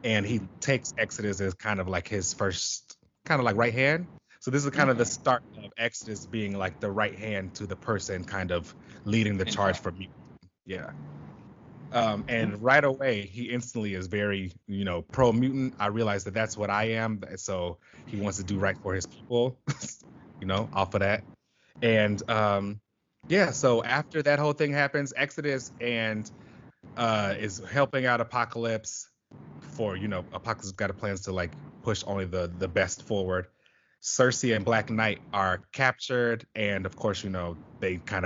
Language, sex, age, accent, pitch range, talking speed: English, male, 30-49, American, 95-120 Hz, 180 wpm